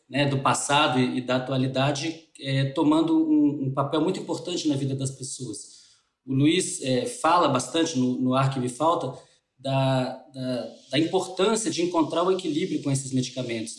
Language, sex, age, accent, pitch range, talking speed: Portuguese, male, 20-39, Brazilian, 130-175 Hz, 160 wpm